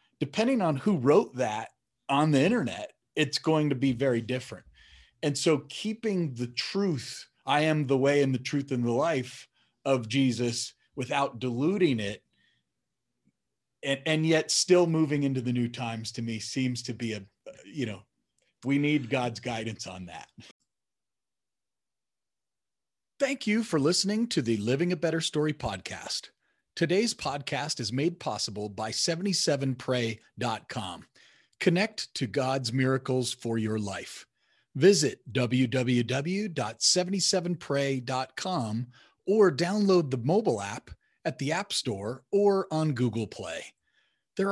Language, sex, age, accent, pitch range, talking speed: English, male, 40-59, American, 120-165 Hz, 130 wpm